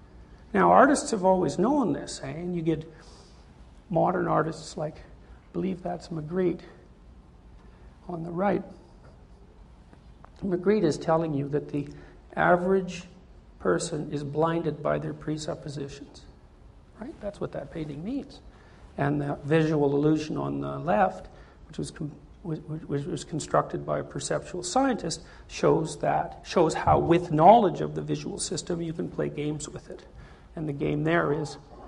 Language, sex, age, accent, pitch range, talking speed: English, male, 60-79, American, 135-175 Hz, 145 wpm